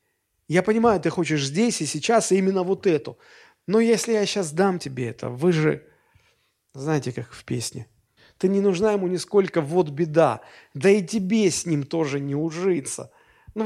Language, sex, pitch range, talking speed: Russian, male, 135-190 Hz, 175 wpm